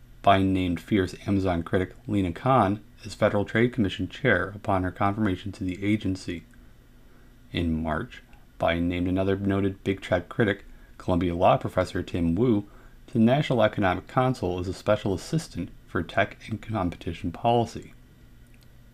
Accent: American